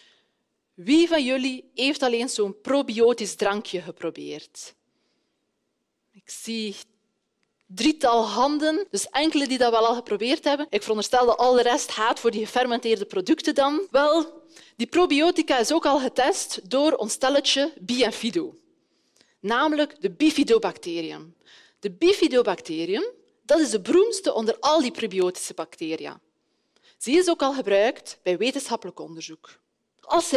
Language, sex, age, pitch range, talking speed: Dutch, female, 20-39, 205-310 Hz, 130 wpm